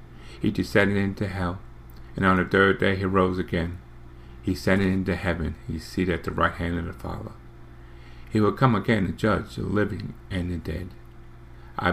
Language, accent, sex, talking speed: English, American, male, 190 wpm